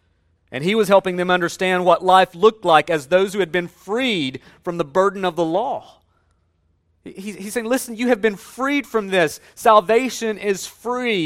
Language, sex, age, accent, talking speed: English, male, 40-59, American, 180 wpm